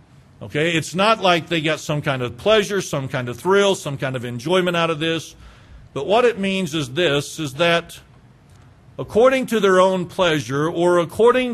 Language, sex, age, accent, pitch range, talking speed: English, male, 50-69, American, 140-180 Hz, 185 wpm